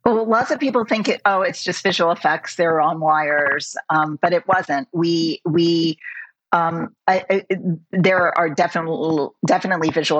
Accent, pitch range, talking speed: American, 150-185 Hz, 165 wpm